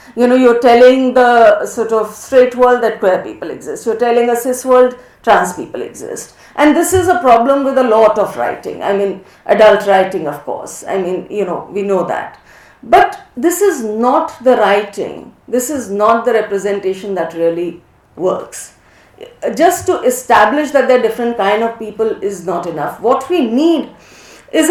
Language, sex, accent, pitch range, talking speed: Tamil, female, native, 220-295 Hz, 180 wpm